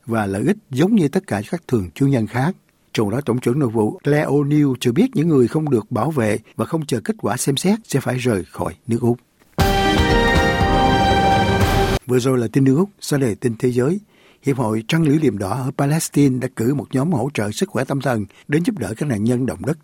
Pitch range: 110-155 Hz